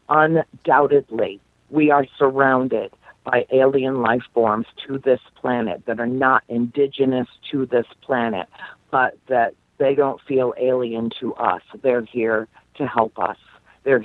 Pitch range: 120-145 Hz